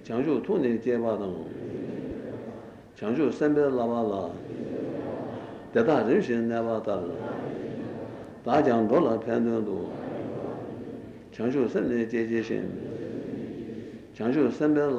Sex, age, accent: male, 60-79, Turkish